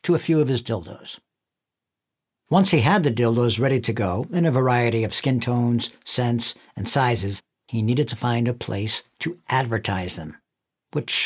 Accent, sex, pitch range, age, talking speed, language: American, male, 120-175 Hz, 60-79, 175 wpm, English